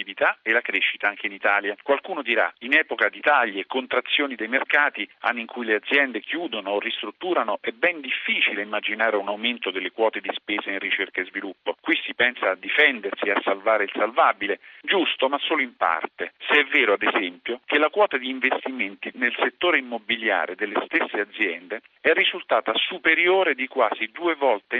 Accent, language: native, Italian